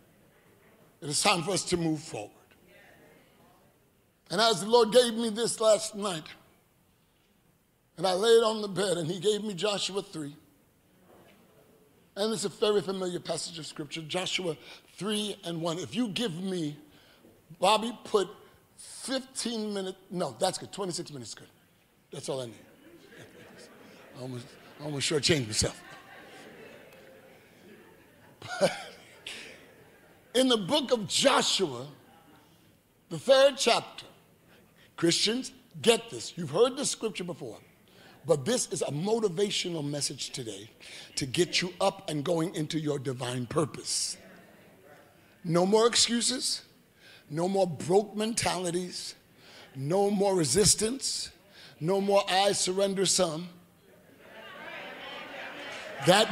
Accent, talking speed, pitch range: American, 125 wpm, 160-215 Hz